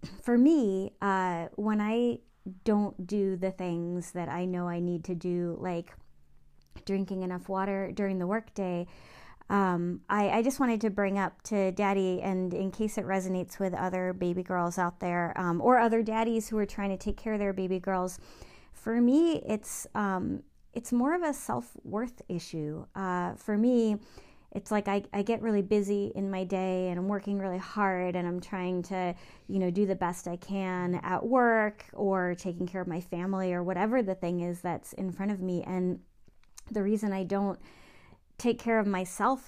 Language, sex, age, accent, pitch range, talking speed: English, female, 30-49, American, 180-205 Hz, 190 wpm